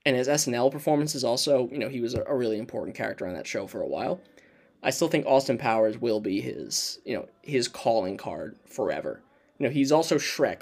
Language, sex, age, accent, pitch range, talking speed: English, male, 10-29, American, 115-150 Hz, 220 wpm